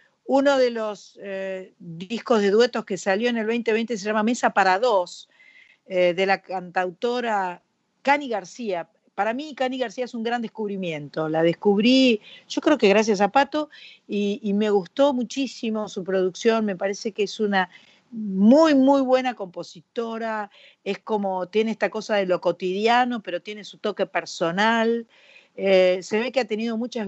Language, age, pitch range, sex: Spanish, 50-69, 195-250 Hz, female